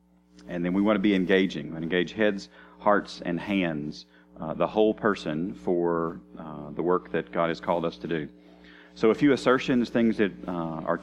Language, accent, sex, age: English, American, male, 40-59